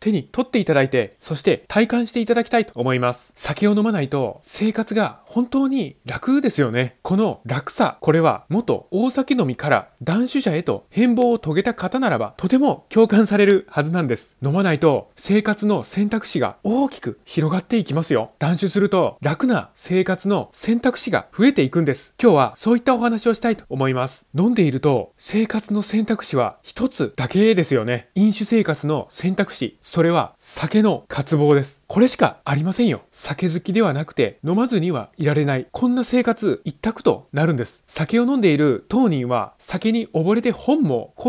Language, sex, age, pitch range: Japanese, male, 20-39, 150-230 Hz